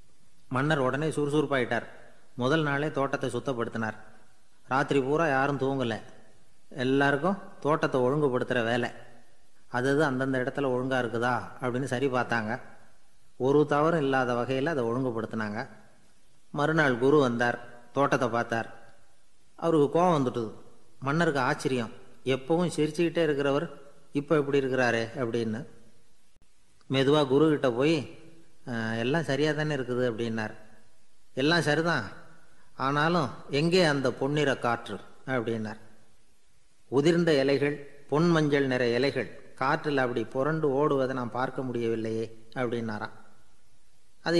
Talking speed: 105 wpm